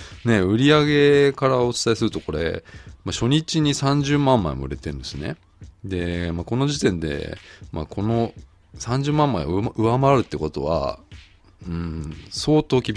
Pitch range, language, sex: 85-130 Hz, Japanese, male